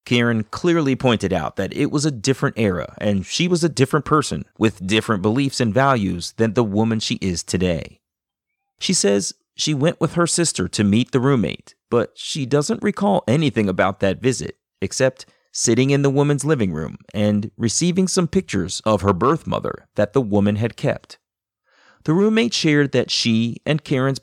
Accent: American